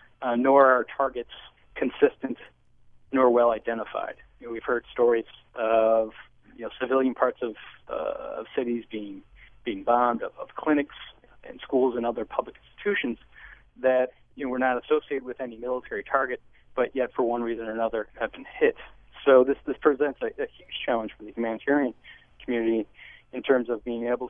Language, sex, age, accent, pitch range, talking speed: English, male, 40-59, American, 115-130 Hz, 160 wpm